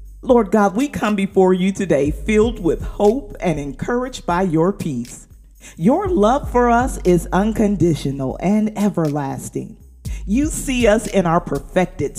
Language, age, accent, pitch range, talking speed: English, 50-69, American, 165-235 Hz, 145 wpm